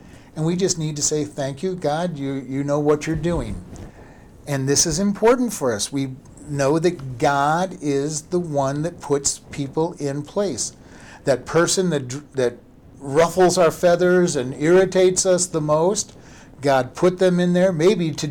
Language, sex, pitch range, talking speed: English, male, 140-185 Hz, 170 wpm